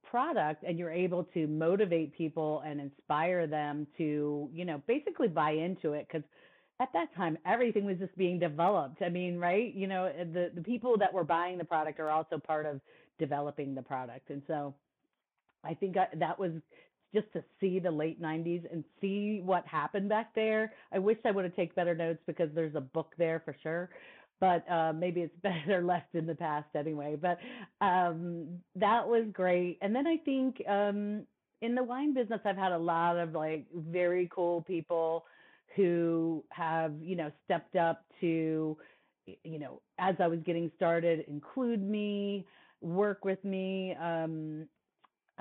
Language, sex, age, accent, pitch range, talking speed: English, female, 40-59, American, 160-185 Hz, 175 wpm